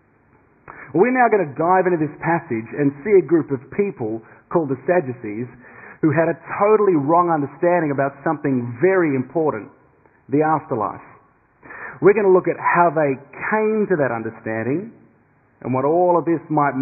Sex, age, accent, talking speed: male, 30-49, Australian, 165 wpm